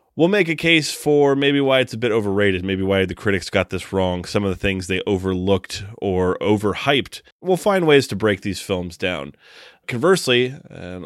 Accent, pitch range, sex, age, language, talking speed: American, 95-125 Hz, male, 30-49, English, 195 wpm